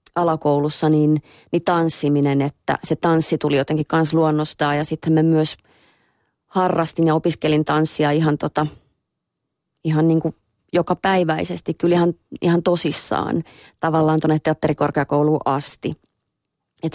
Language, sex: Finnish, female